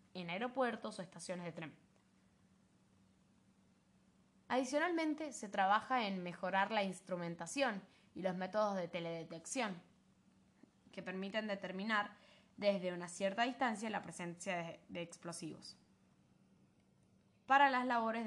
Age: 10-29